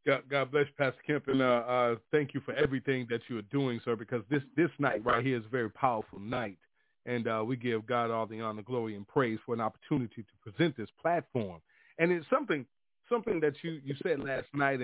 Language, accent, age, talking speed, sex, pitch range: English, American, 40-59, 230 wpm, male, 125-170 Hz